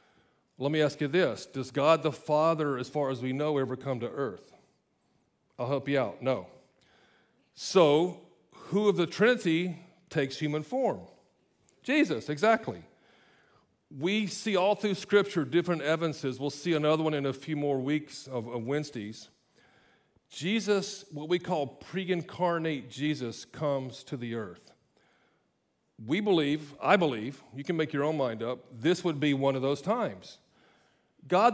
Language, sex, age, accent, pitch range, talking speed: English, male, 40-59, American, 130-175 Hz, 150 wpm